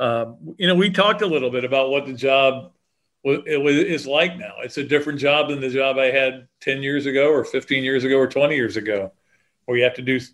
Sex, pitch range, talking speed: male, 125-145 Hz, 250 wpm